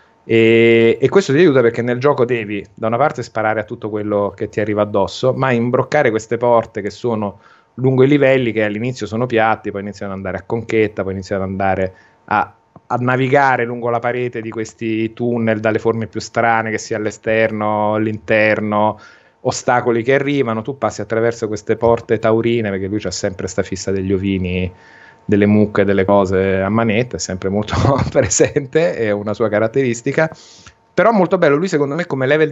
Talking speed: 185 wpm